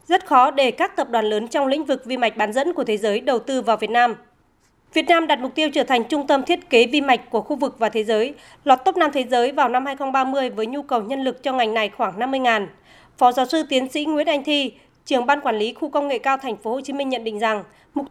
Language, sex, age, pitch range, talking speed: Vietnamese, female, 20-39, 230-290 Hz, 280 wpm